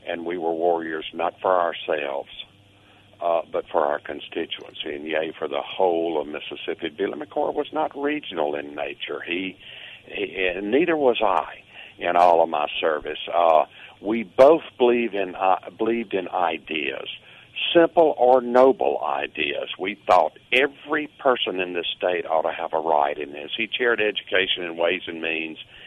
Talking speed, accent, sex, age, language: 160 wpm, American, male, 60-79, English